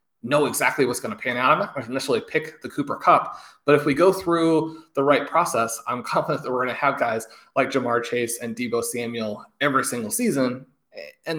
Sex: male